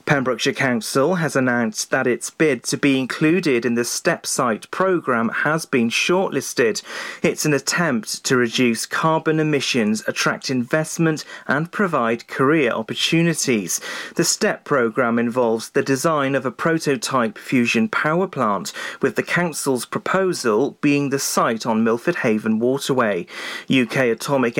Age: 40-59